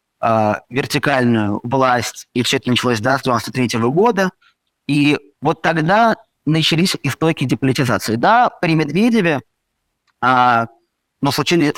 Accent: native